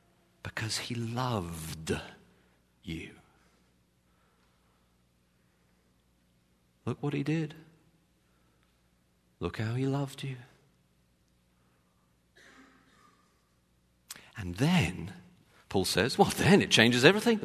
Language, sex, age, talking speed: English, male, 50-69, 75 wpm